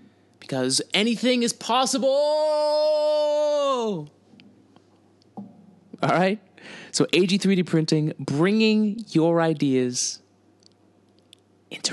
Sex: male